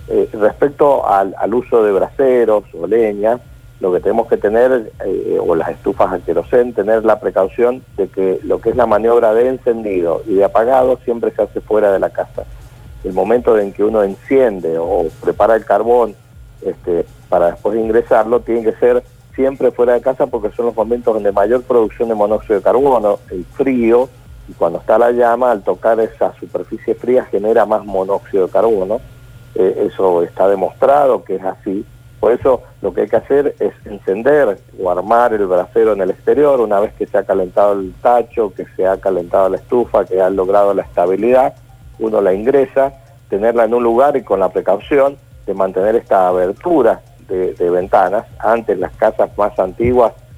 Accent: Argentinian